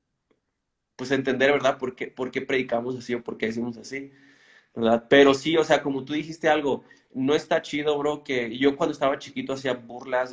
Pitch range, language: 120-135 Hz, Spanish